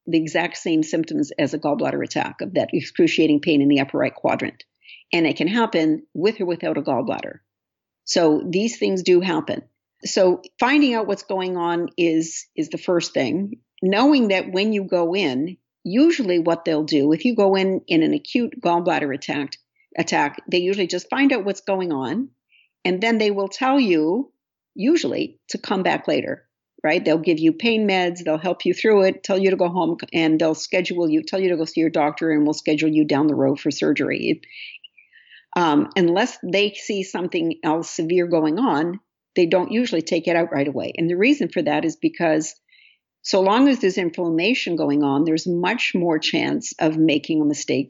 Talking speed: 195 wpm